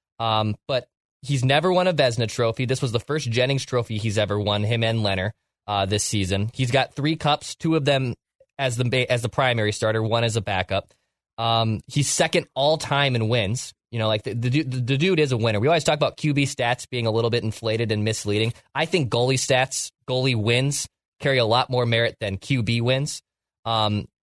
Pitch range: 115-145 Hz